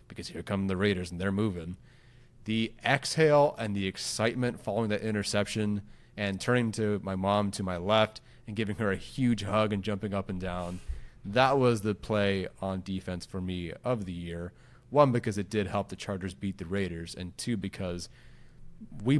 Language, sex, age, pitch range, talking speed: English, male, 30-49, 95-120 Hz, 190 wpm